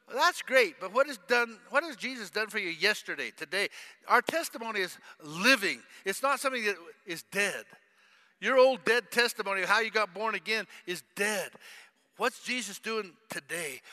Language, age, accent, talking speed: English, 50-69, American, 175 wpm